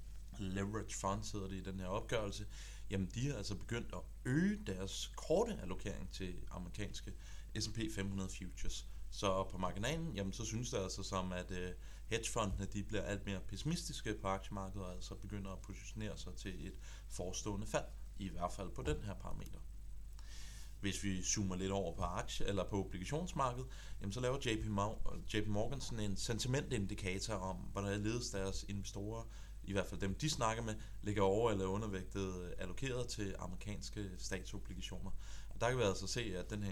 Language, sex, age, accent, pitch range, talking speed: Danish, male, 30-49, native, 95-110 Hz, 175 wpm